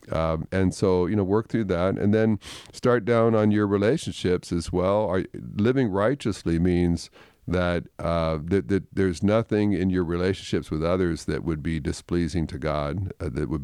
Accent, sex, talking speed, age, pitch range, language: American, male, 180 wpm, 50-69, 80-100 Hz, English